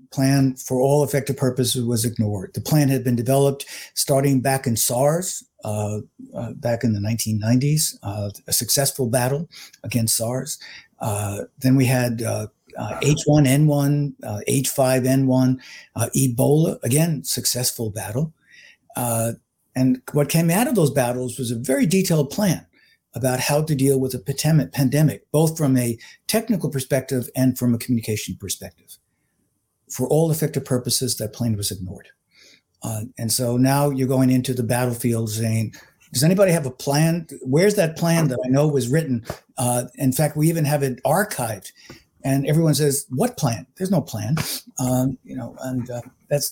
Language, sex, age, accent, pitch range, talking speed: English, male, 50-69, American, 120-145 Hz, 160 wpm